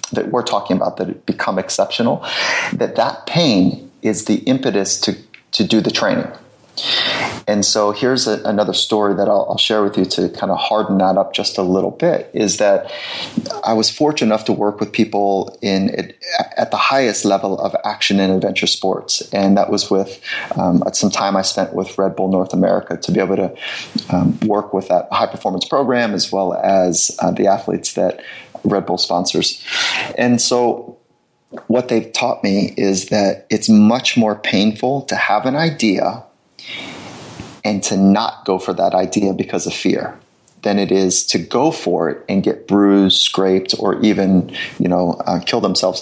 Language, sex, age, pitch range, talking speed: English, male, 30-49, 95-110 Hz, 185 wpm